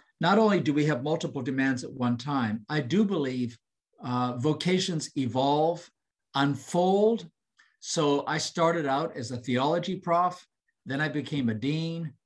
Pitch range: 135-185 Hz